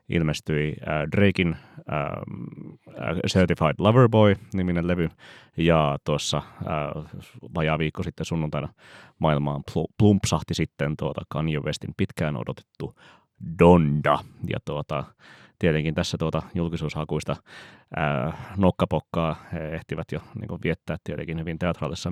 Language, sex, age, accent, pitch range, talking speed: Finnish, male, 30-49, native, 75-90 Hz, 105 wpm